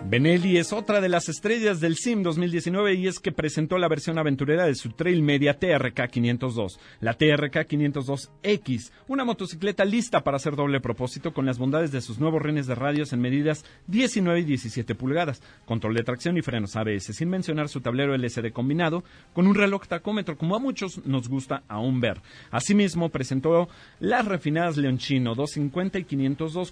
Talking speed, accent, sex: 175 wpm, Mexican, male